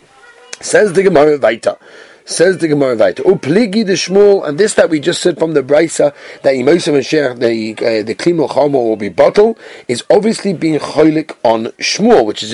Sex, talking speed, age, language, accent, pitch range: male, 175 wpm, 30-49, English, British, 155-225 Hz